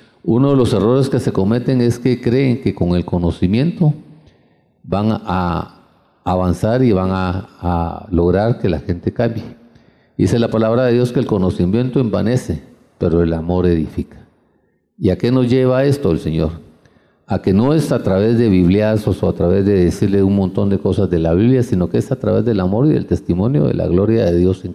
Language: Spanish